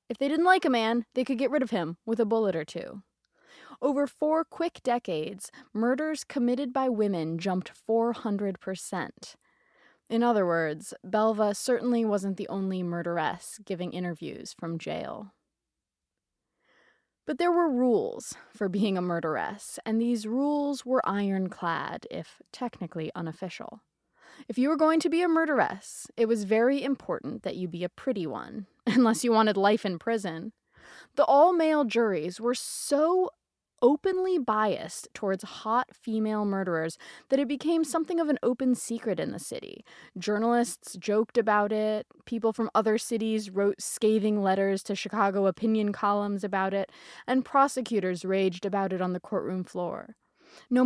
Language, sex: English, female